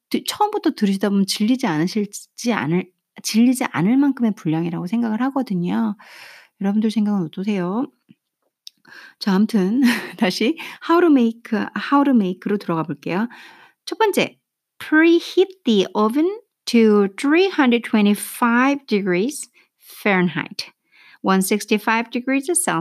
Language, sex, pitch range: Korean, female, 190-280 Hz